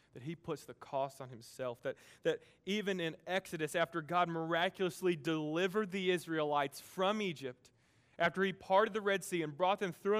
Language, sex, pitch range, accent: English, male, 130-175 Hz, American